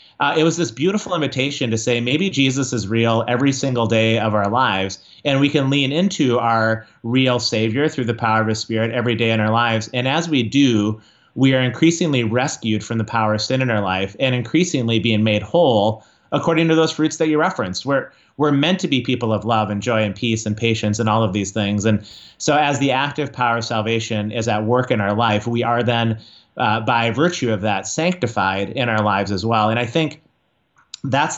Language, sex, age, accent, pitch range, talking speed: English, male, 30-49, American, 110-135 Hz, 220 wpm